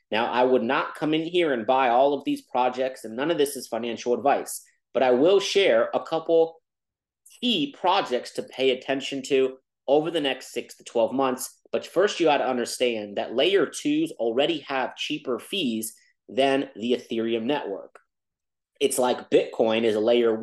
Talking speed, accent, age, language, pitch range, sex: 180 wpm, American, 30-49, English, 115-160 Hz, male